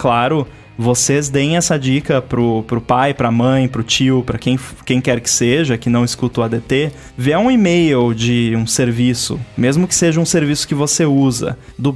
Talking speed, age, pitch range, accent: 190 wpm, 20-39, 125-185 Hz, Brazilian